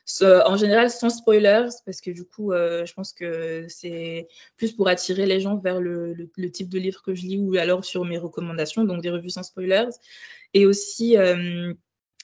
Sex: female